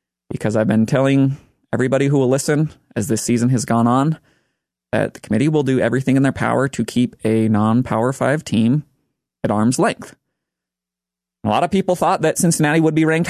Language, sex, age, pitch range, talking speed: English, male, 30-49, 115-160 Hz, 190 wpm